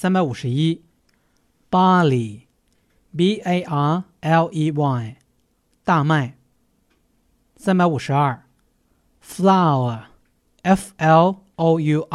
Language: Chinese